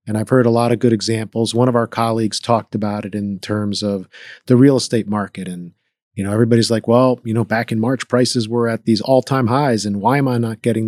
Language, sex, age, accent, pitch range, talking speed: English, male, 40-59, American, 105-125 Hz, 250 wpm